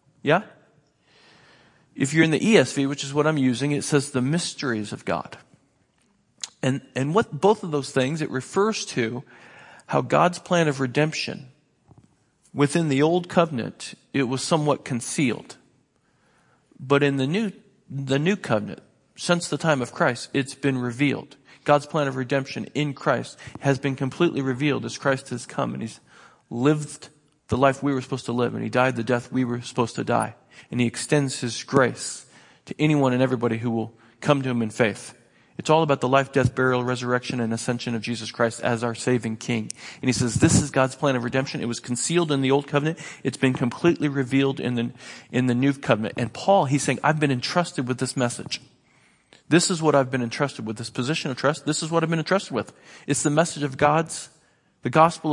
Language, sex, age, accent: English, male, 40-59, American